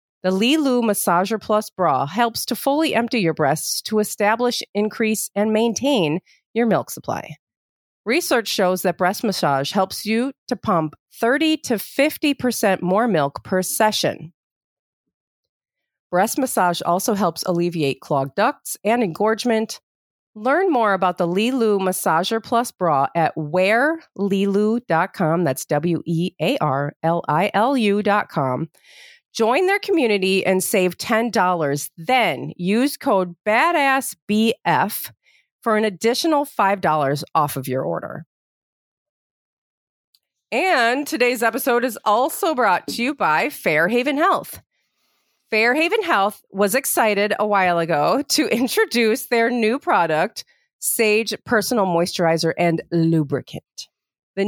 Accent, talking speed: American, 120 wpm